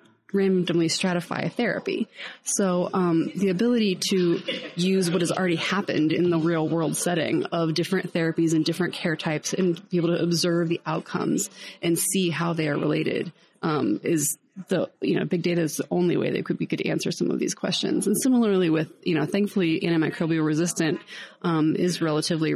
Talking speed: 185 wpm